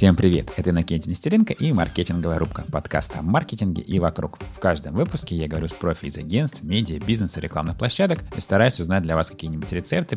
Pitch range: 85-110 Hz